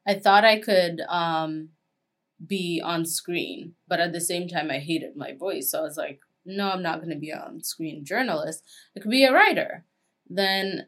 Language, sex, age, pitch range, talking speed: English, female, 20-39, 160-185 Hz, 195 wpm